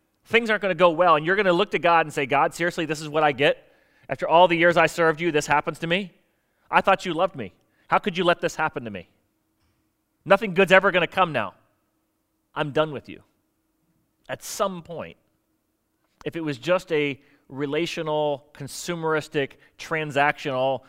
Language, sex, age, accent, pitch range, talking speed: English, male, 30-49, American, 130-165 Hz, 195 wpm